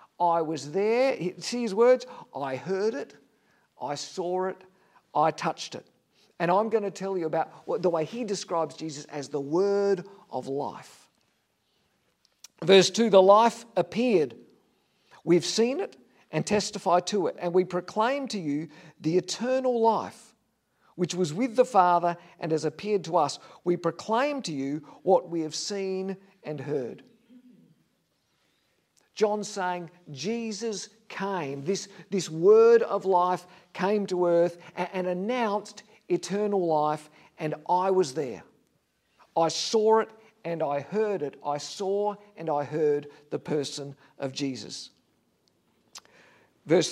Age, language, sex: 50-69, English, male